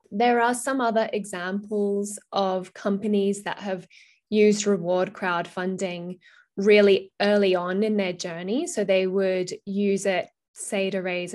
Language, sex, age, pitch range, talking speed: English, female, 10-29, 180-200 Hz, 135 wpm